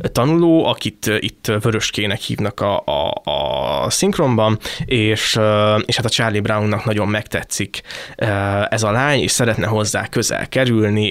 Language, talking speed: Hungarian, 130 wpm